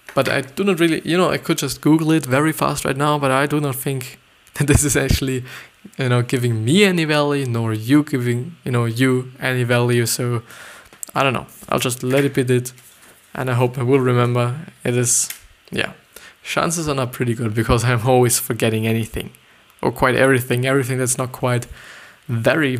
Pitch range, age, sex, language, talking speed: 125-150 Hz, 20-39, male, English, 200 wpm